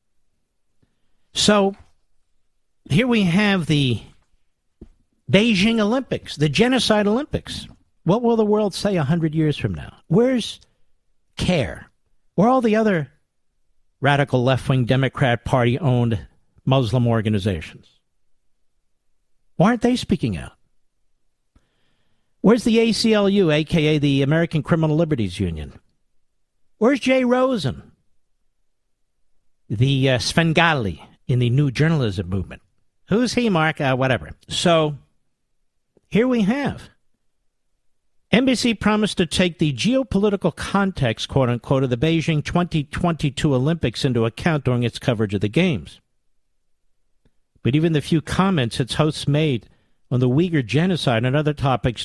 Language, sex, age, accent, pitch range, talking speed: English, male, 50-69, American, 125-200 Hz, 120 wpm